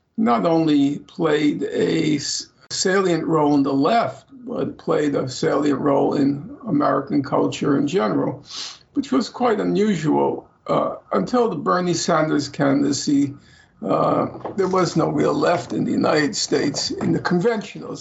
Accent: American